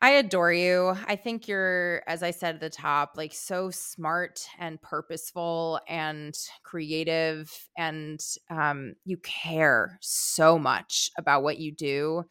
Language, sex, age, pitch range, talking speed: English, female, 20-39, 150-175 Hz, 140 wpm